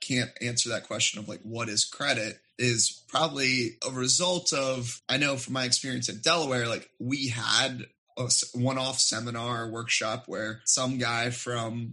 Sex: male